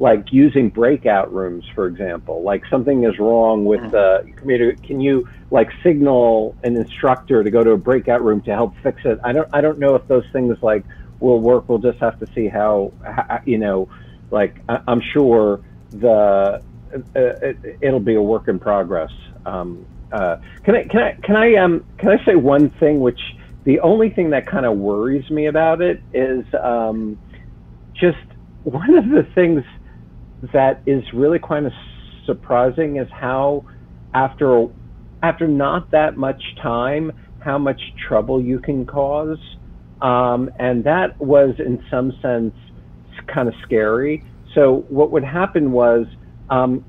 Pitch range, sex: 105-140 Hz, male